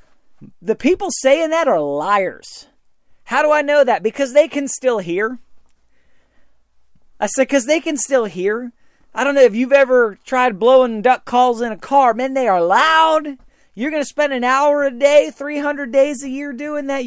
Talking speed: 190 wpm